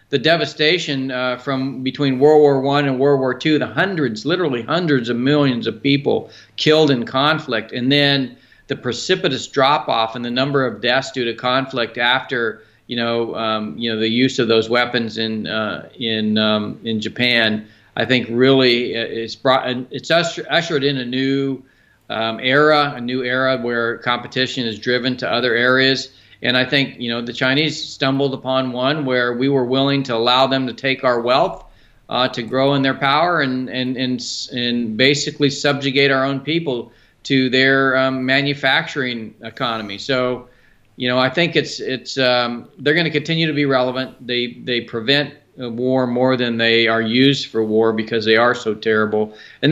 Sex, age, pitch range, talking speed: male, 40-59, 120-140 Hz, 180 wpm